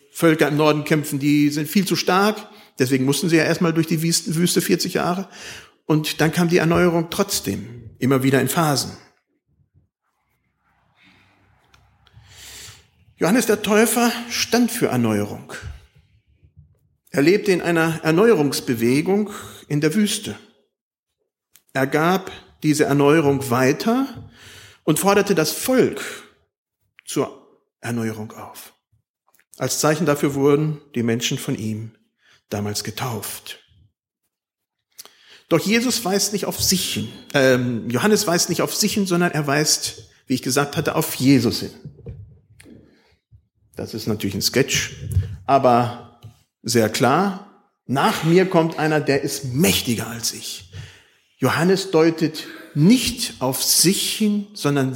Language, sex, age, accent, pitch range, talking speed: German, male, 50-69, German, 120-175 Hz, 125 wpm